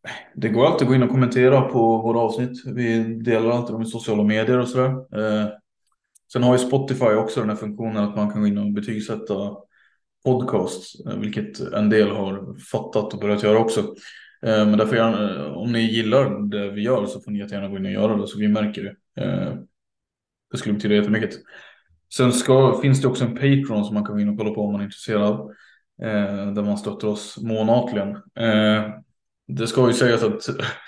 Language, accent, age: Swedish, Norwegian, 20-39